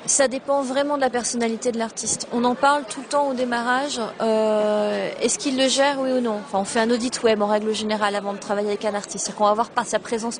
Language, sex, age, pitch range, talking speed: French, female, 30-49, 220-260 Hz, 265 wpm